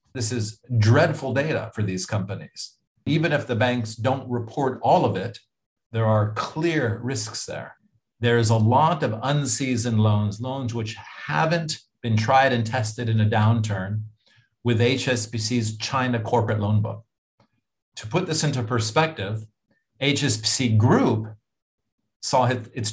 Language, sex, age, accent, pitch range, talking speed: English, male, 40-59, American, 110-125 Hz, 140 wpm